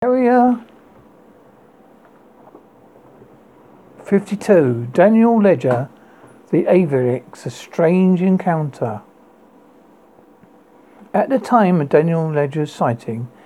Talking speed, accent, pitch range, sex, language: 70 wpm, British, 145-205 Hz, male, English